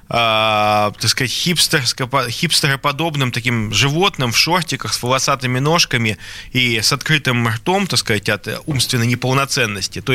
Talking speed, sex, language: 125 wpm, male, Russian